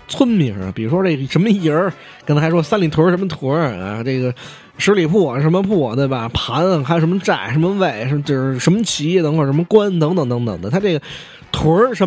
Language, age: Chinese, 20-39